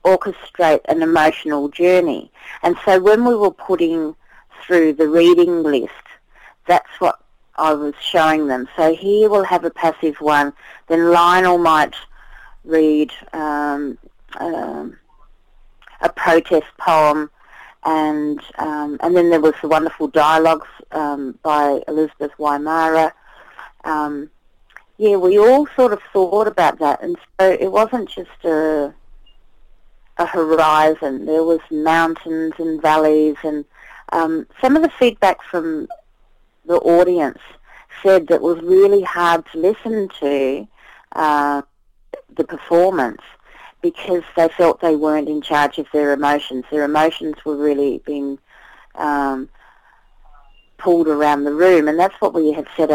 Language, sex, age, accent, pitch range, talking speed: English, female, 40-59, Australian, 150-175 Hz, 130 wpm